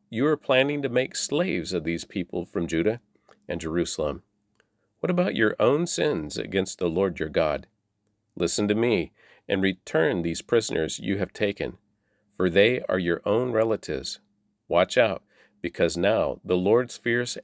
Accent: American